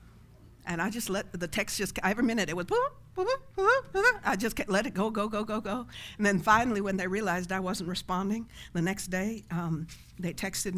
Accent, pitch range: American, 165-205 Hz